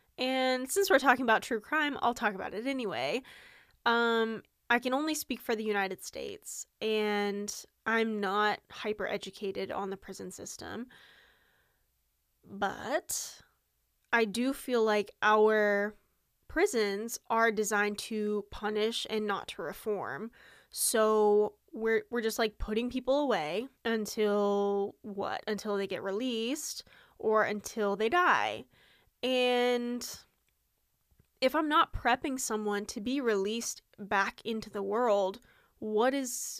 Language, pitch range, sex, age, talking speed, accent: English, 205-250 Hz, female, 10-29, 125 wpm, American